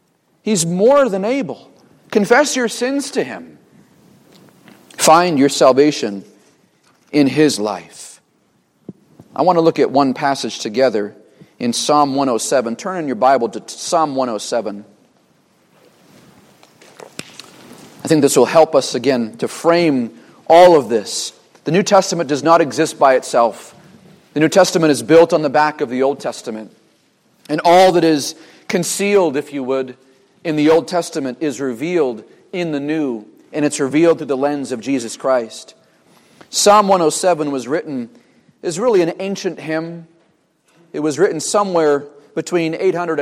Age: 40-59